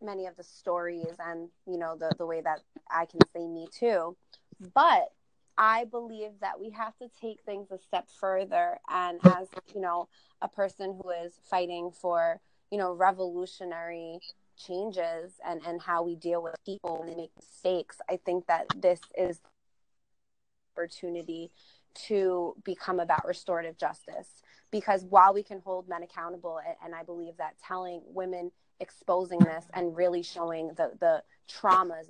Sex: female